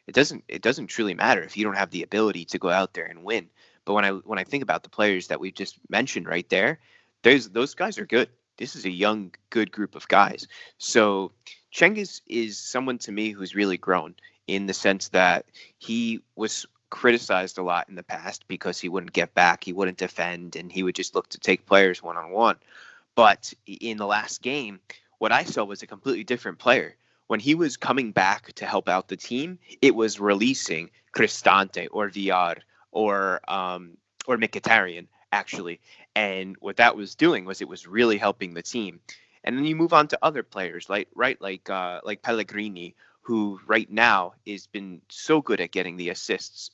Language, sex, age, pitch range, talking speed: Persian, male, 20-39, 95-115 Hz, 200 wpm